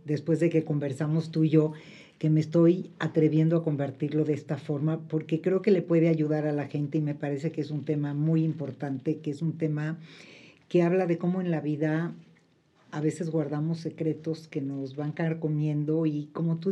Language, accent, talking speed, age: Spanish, Mexican, 210 wpm, 50-69